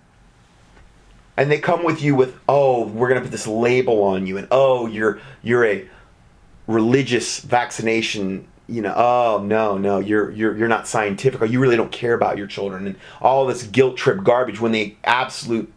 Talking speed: 185 wpm